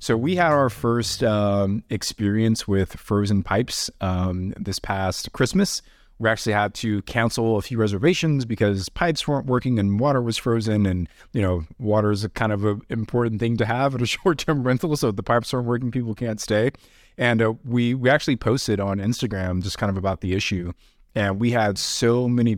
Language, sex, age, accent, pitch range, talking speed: English, male, 20-39, American, 95-115 Hz, 200 wpm